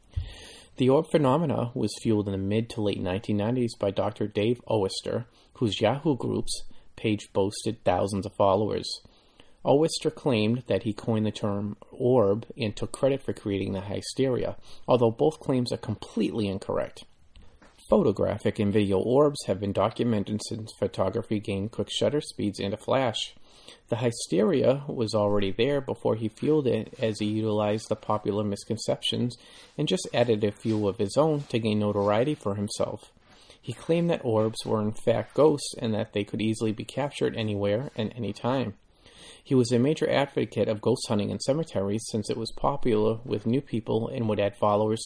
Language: English